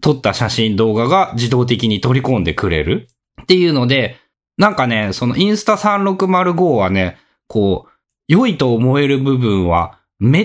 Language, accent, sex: Japanese, native, male